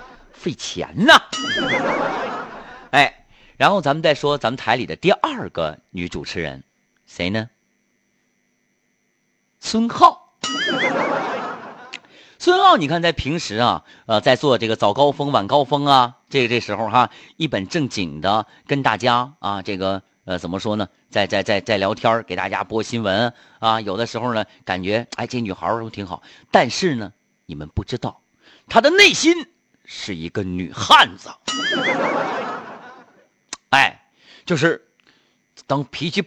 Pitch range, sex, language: 100-165 Hz, male, Chinese